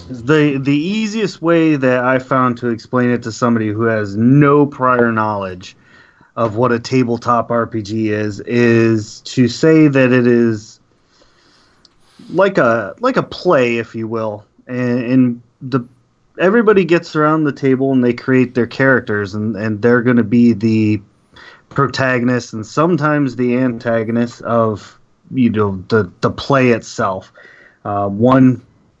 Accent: American